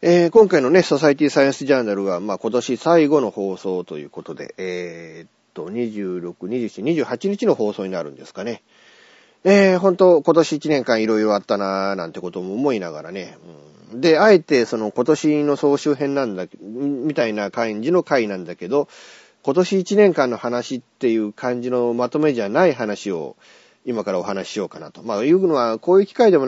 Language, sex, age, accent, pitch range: Japanese, male, 40-59, native, 105-155 Hz